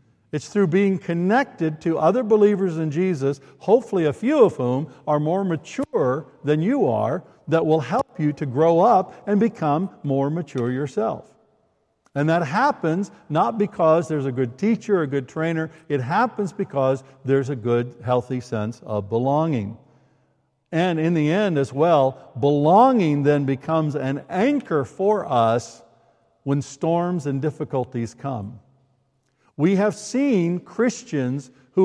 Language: English